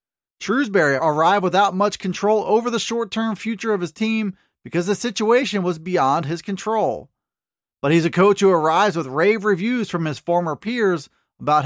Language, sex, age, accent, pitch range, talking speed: English, male, 30-49, American, 165-210 Hz, 170 wpm